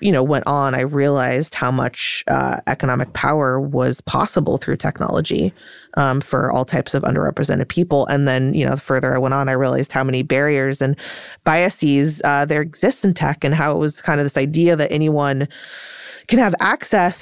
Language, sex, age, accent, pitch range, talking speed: English, female, 20-39, American, 140-165 Hz, 195 wpm